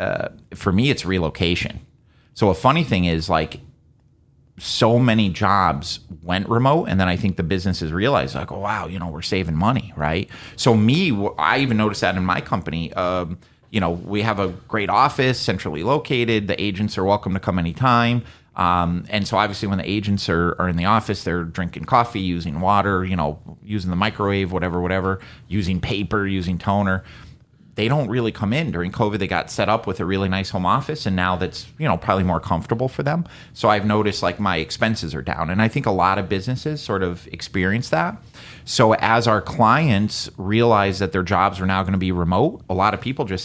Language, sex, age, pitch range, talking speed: English, male, 30-49, 90-110 Hz, 210 wpm